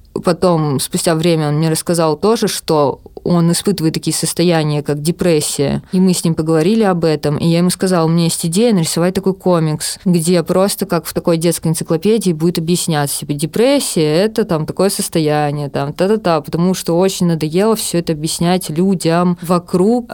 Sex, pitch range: female, 160-185 Hz